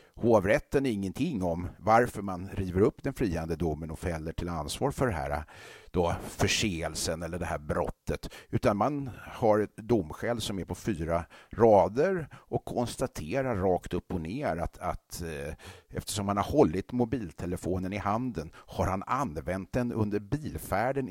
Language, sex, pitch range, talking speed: Swedish, male, 85-110 Hz, 155 wpm